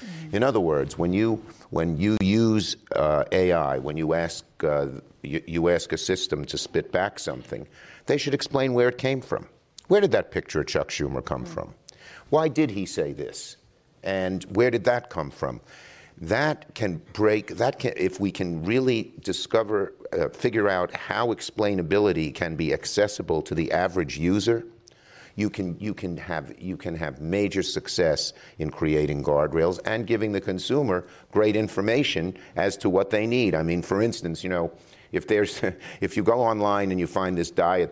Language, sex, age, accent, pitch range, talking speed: English, male, 50-69, American, 85-110 Hz, 180 wpm